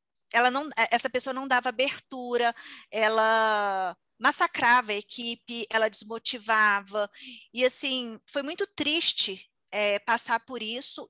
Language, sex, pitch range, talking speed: Portuguese, female, 225-270 Hz, 105 wpm